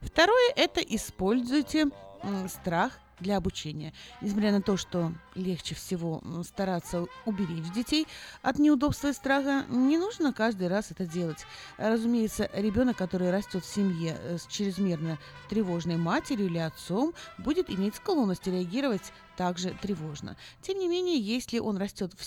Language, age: Russian, 30-49